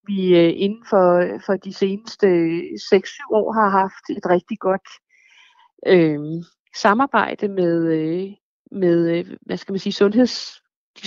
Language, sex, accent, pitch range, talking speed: Danish, female, native, 185-230 Hz, 130 wpm